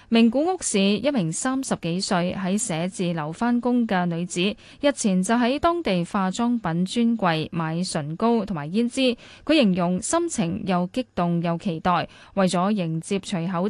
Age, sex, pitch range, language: 10-29, female, 180-230 Hz, Chinese